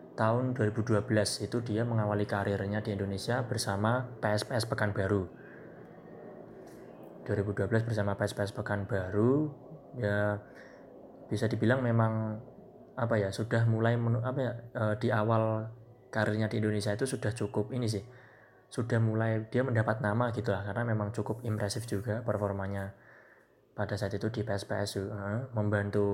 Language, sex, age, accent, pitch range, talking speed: Indonesian, male, 20-39, native, 100-115 Hz, 125 wpm